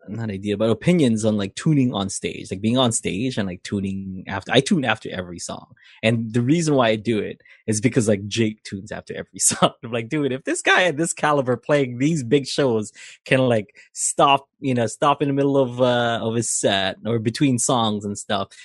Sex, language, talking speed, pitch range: male, English, 225 wpm, 105-140 Hz